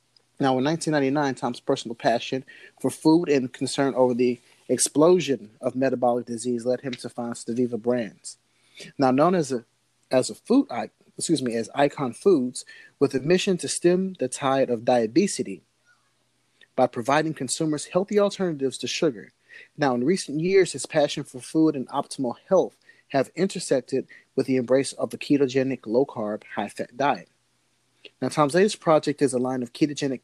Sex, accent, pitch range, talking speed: male, American, 125-160 Hz, 160 wpm